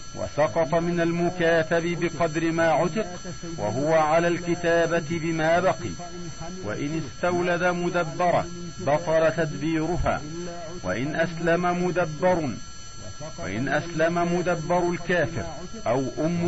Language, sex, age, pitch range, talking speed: Arabic, male, 50-69, 155-175 Hz, 90 wpm